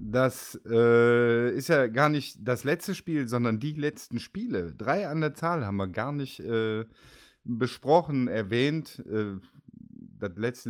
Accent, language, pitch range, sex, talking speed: German, German, 100-125 Hz, male, 150 wpm